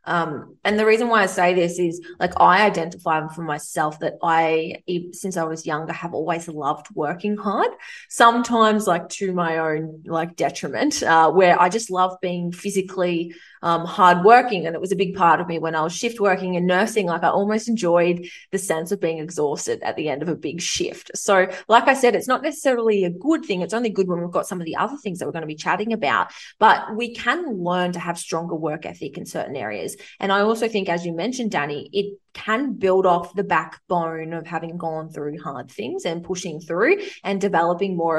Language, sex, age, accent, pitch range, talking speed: English, female, 20-39, Australian, 170-215 Hz, 215 wpm